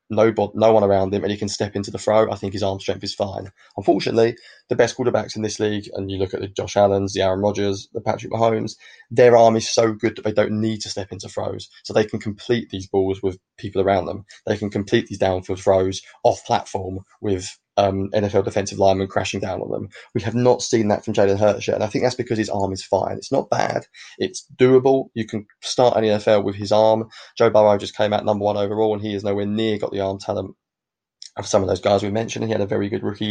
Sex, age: male, 20-39